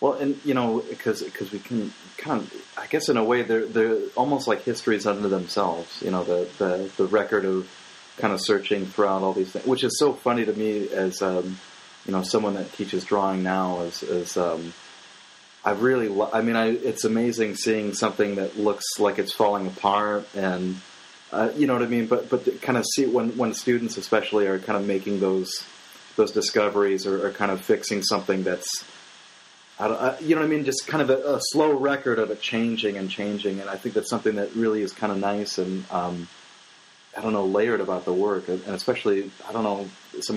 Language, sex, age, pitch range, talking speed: English, male, 30-49, 95-115 Hz, 215 wpm